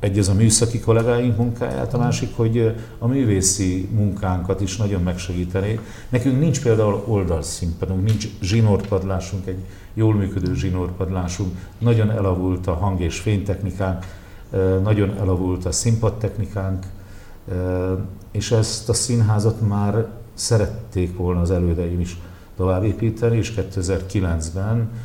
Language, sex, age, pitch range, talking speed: Hungarian, male, 50-69, 90-105 Hz, 115 wpm